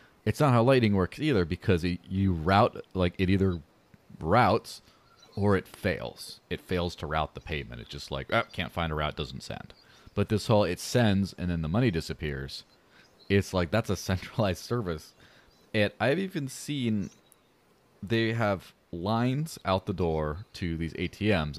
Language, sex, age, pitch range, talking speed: English, male, 30-49, 80-105 Hz, 170 wpm